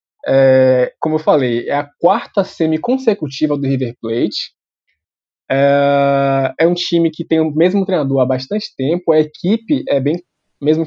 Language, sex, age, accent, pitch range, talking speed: Portuguese, male, 20-39, Brazilian, 135-180 Hz, 140 wpm